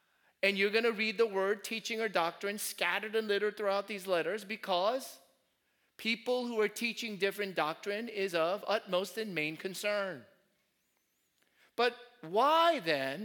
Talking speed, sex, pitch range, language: 145 wpm, male, 190-240 Hz, English